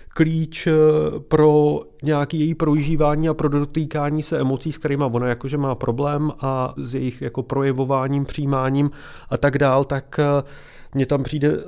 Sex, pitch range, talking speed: male, 135-155 Hz, 150 wpm